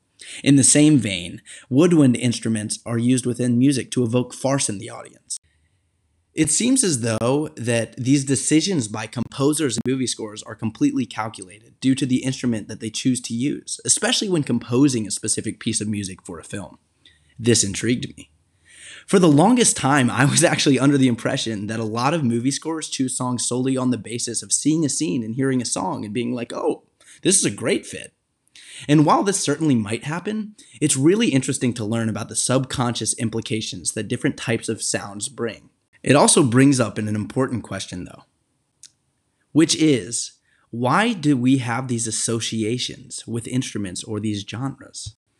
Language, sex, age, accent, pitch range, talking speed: English, male, 20-39, American, 110-135 Hz, 180 wpm